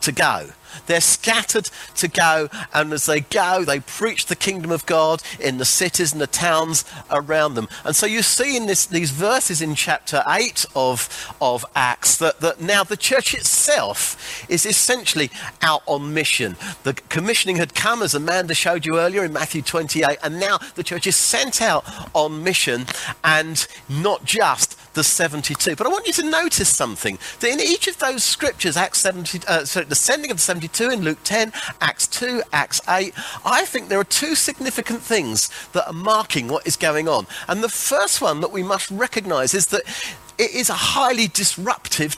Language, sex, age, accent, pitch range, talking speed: English, male, 40-59, British, 160-240 Hz, 185 wpm